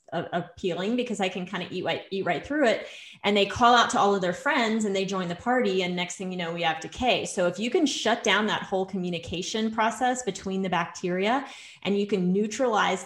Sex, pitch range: female, 180-205 Hz